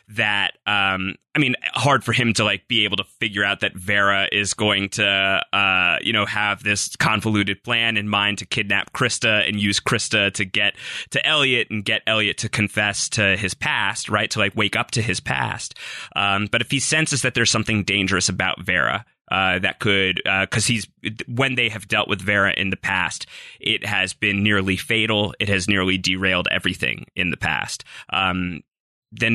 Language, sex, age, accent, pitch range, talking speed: English, male, 20-39, American, 95-110 Hz, 195 wpm